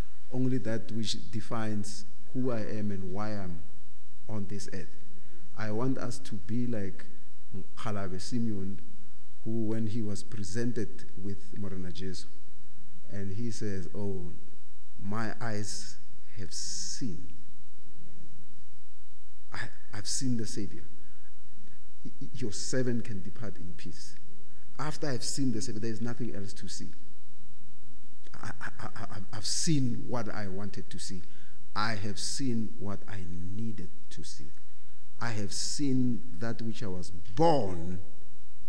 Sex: male